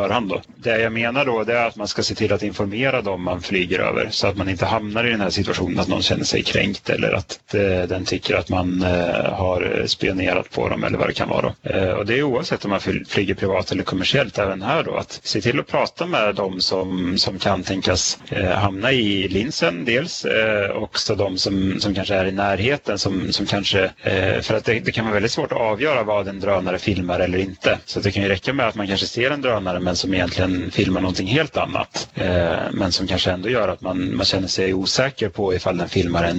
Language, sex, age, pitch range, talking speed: Swedish, male, 30-49, 90-105 Hz, 240 wpm